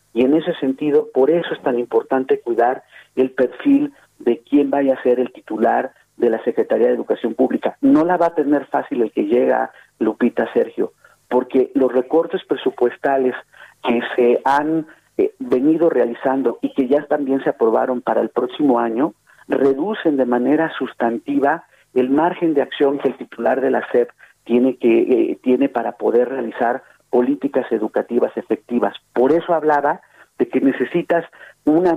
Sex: male